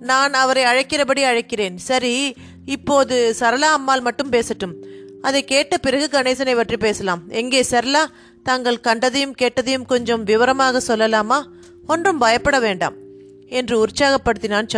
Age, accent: 30-49, native